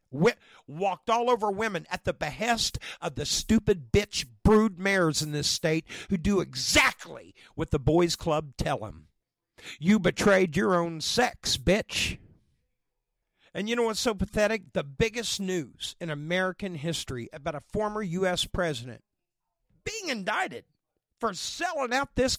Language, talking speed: English, 145 wpm